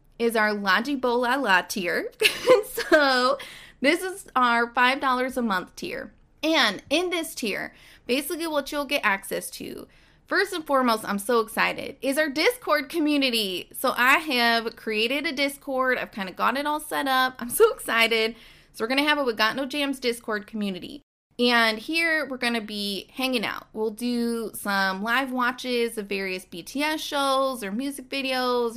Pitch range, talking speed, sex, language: 215-285 Hz, 170 wpm, female, English